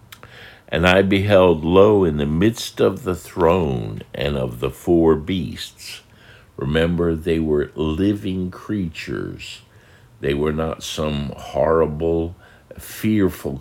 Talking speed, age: 115 wpm, 60-79